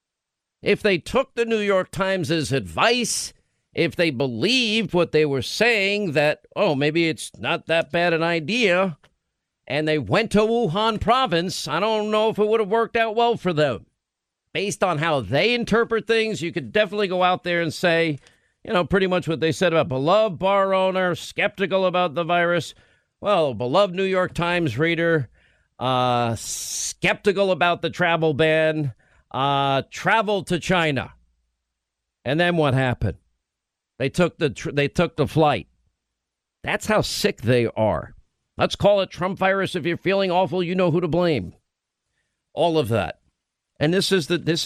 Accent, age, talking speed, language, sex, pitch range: American, 50-69, 170 wpm, English, male, 145-190 Hz